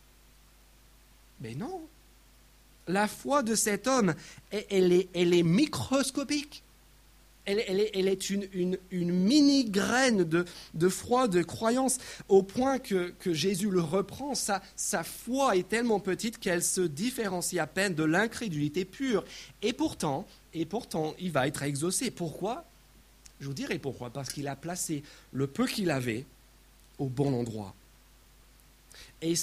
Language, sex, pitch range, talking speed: French, male, 160-210 Hz, 150 wpm